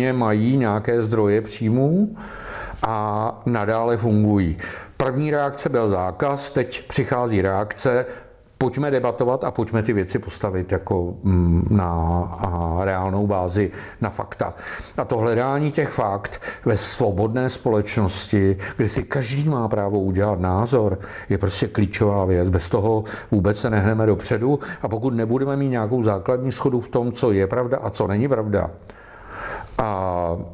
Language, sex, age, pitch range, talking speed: Czech, male, 50-69, 100-125 Hz, 135 wpm